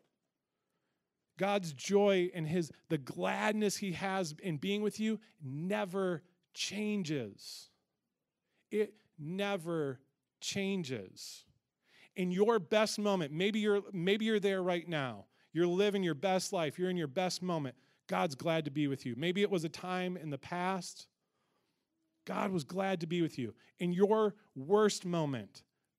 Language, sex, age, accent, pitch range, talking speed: English, male, 40-59, American, 150-195 Hz, 145 wpm